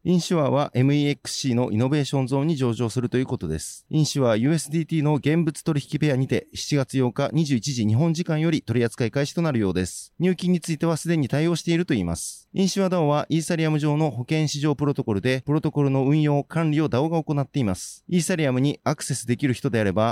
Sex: male